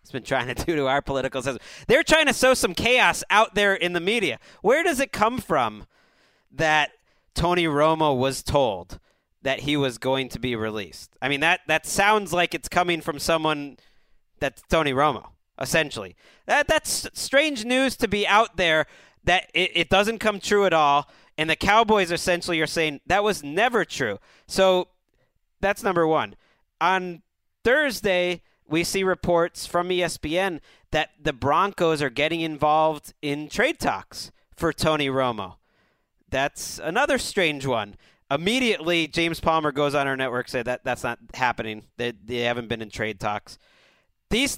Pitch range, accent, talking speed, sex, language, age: 145-195 Hz, American, 165 wpm, male, English, 40-59